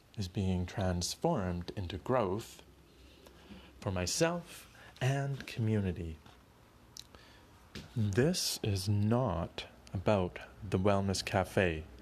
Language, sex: English, male